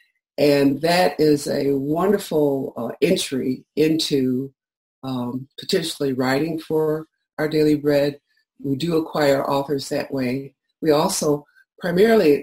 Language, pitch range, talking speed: English, 135-155 Hz, 115 wpm